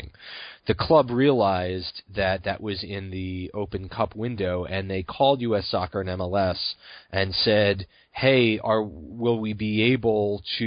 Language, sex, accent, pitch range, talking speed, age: English, male, American, 95-115 Hz, 145 wpm, 30-49